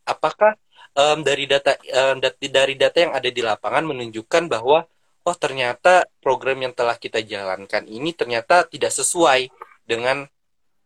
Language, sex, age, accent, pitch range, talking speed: Indonesian, male, 20-39, native, 125-170 Hz, 145 wpm